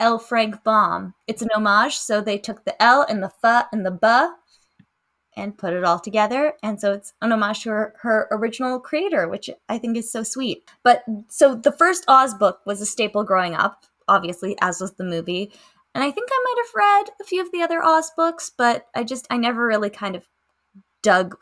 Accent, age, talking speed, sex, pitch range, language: American, 10-29, 215 wpm, female, 200-270 Hz, English